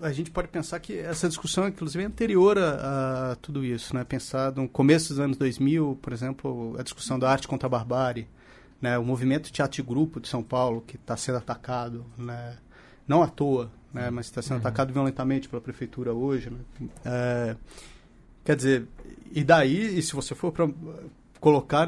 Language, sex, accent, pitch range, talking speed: Portuguese, male, Brazilian, 125-170 Hz, 180 wpm